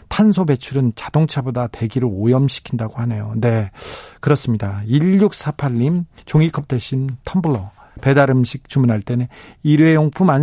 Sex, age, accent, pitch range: male, 40-59, native, 120-165 Hz